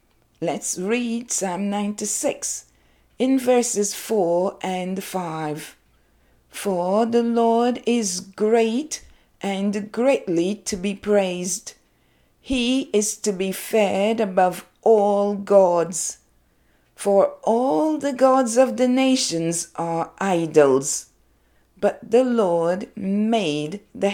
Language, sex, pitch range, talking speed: English, female, 170-230 Hz, 100 wpm